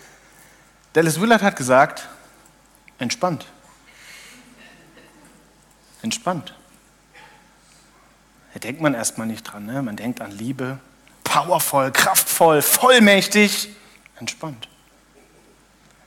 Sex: male